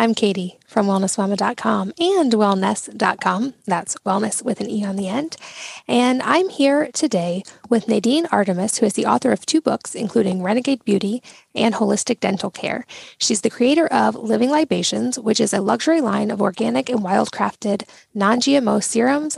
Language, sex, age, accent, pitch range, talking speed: English, female, 10-29, American, 205-260 Hz, 160 wpm